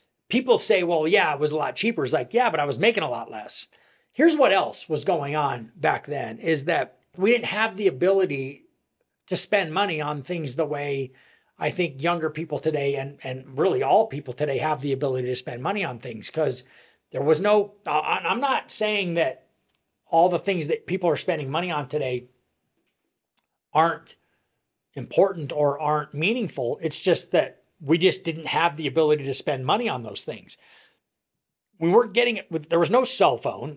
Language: English